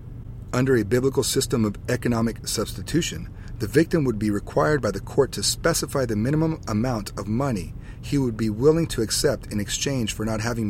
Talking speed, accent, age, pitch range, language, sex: 185 wpm, American, 30-49, 105-125 Hz, English, male